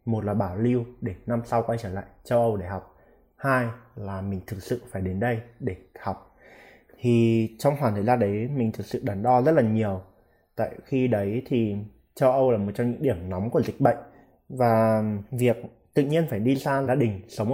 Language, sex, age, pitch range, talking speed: Vietnamese, male, 20-39, 105-135 Hz, 215 wpm